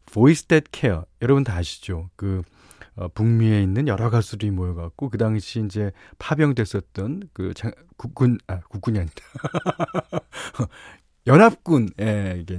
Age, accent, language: 40-59, native, Korean